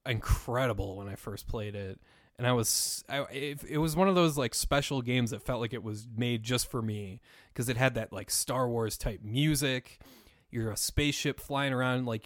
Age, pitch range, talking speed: 20-39, 105-135 Hz, 210 wpm